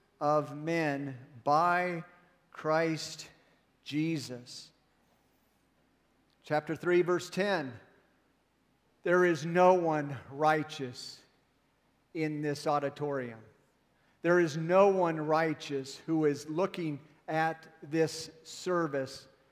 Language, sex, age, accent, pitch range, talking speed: English, male, 50-69, American, 150-195 Hz, 85 wpm